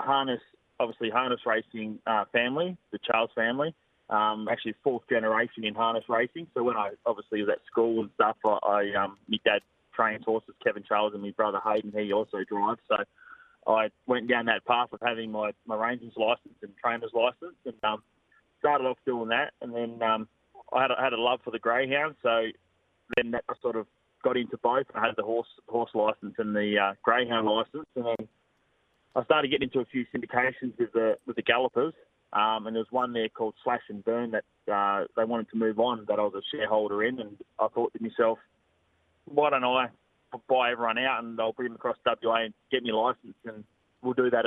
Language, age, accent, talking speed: English, 20-39, Australian, 210 wpm